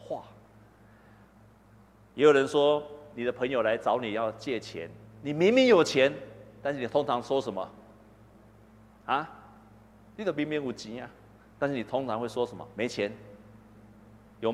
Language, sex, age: Chinese, male, 50-69